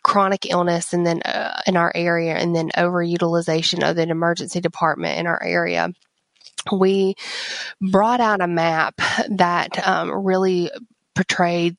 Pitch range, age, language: 165-190 Hz, 20-39, English